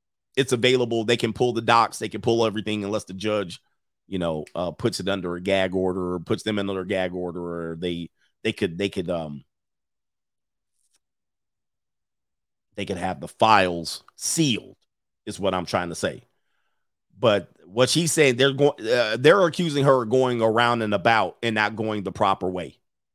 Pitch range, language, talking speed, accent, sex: 105-150 Hz, English, 180 wpm, American, male